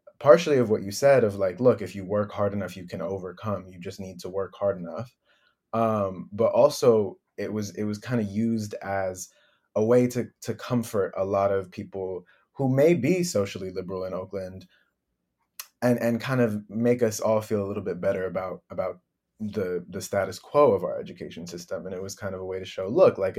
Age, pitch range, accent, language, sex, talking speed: 20-39, 95-110 Hz, American, English, male, 215 wpm